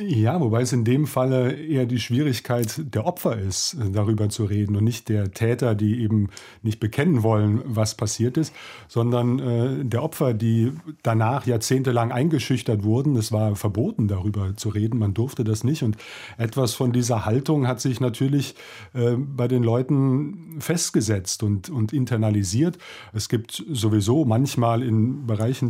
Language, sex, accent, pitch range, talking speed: German, male, German, 110-135 Hz, 160 wpm